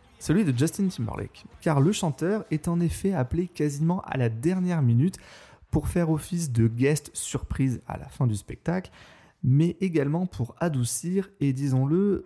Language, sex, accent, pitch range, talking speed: French, male, French, 110-155 Hz, 160 wpm